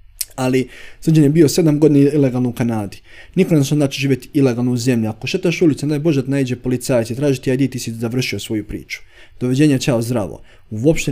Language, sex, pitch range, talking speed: Croatian, male, 115-150 Hz, 180 wpm